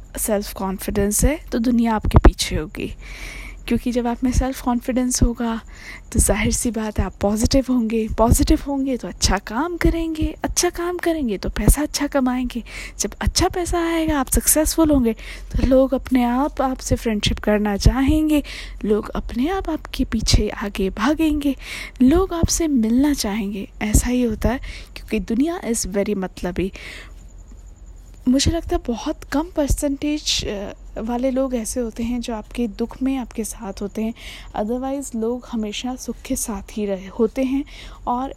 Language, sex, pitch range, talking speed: Hindi, female, 215-275 Hz, 160 wpm